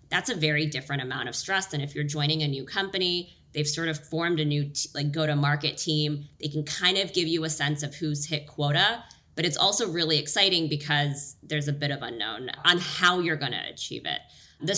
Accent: American